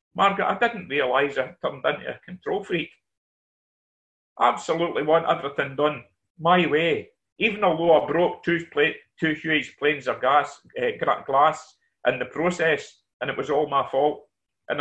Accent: British